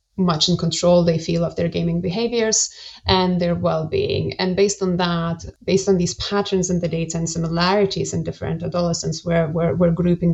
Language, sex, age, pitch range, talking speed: English, female, 20-39, 170-190 Hz, 185 wpm